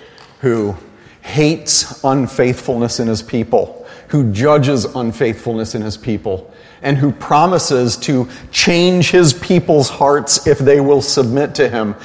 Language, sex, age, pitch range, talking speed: English, male, 40-59, 110-135 Hz, 130 wpm